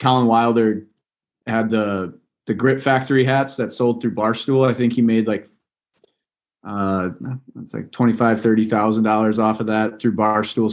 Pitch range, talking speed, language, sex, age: 105-120 Hz, 150 wpm, English, male, 20-39